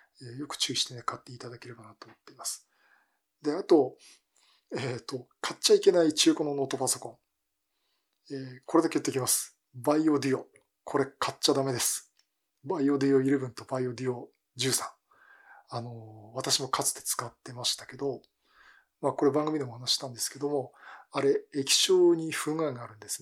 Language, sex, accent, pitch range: Japanese, male, native, 125-160 Hz